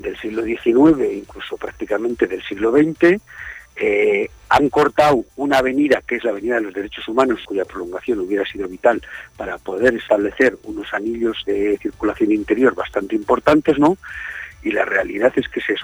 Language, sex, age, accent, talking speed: Spanish, male, 50-69, Spanish, 170 wpm